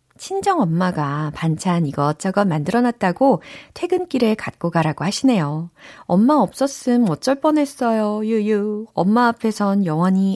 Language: Korean